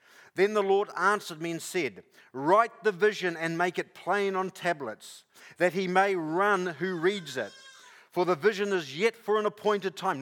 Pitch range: 155-200 Hz